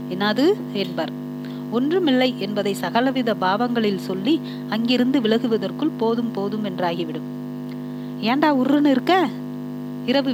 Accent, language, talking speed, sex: native, Tamil, 75 wpm, female